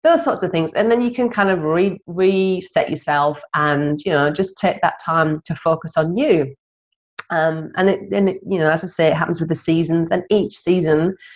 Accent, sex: British, female